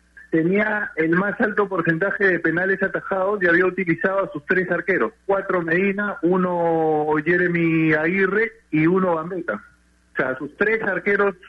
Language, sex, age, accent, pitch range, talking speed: Spanish, male, 40-59, Argentinian, 135-185 Hz, 145 wpm